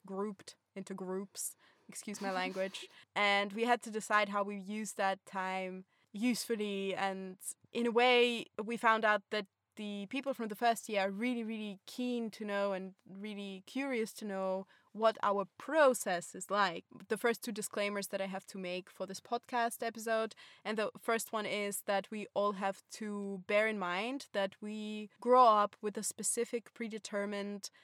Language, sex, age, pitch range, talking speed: English, female, 20-39, 195-225 Hz, 175 wpm